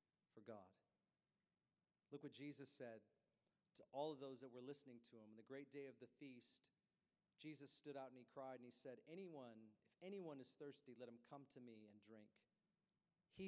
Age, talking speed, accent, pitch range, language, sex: 40-59, 195 wpm, American, 115-140 Hz, English, male